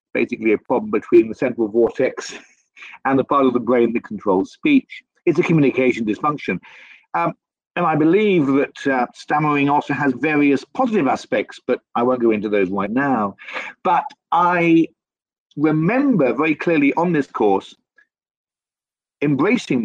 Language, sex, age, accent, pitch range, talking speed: English, male, 50-69, British, 120-185 Hz, 150 wpm